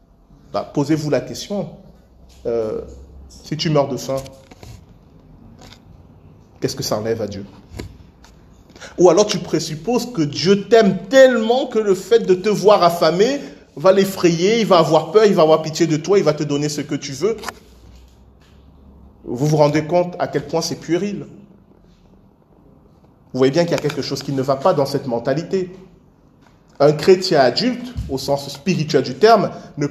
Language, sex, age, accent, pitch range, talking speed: French, male, 40-59, French, 130-185 Hz, 170 wpm